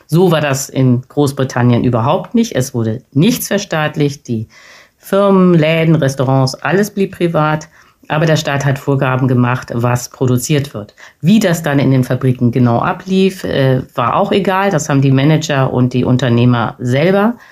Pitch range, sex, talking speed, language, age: 130-165 Hz, female, 160 wpm, German, 50-69